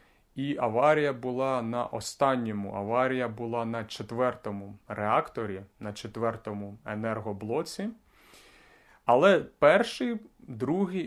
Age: 30-49